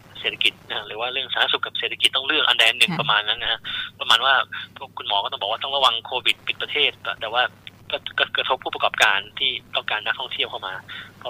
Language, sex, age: Thai, male, 20-39